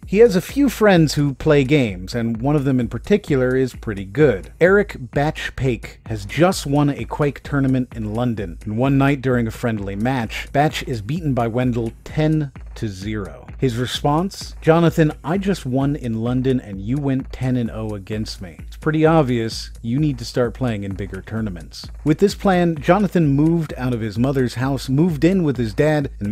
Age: 40-59